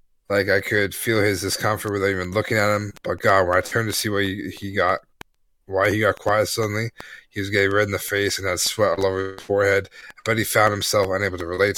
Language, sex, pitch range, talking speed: English, male, 95-110 Hz, 245 wpm